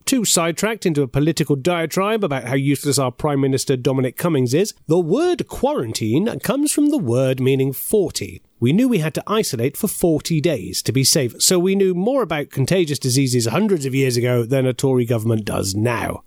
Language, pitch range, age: English, 140-195 Hz, 30-49